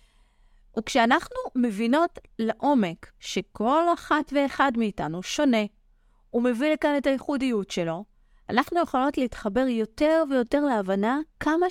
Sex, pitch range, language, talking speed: female, 210-295 Hz, Hebrew, 110 wpm